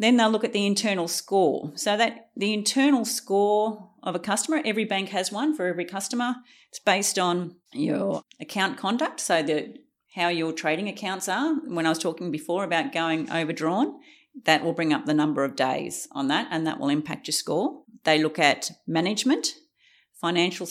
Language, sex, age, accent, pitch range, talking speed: English, female, 40-59, Australian, 160-255 Hz, 185 wpm